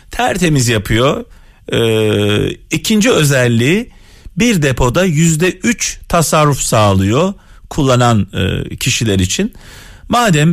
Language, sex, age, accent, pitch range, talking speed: Turkish, male, 40-59, native, 110-170 Hz, 80 wpm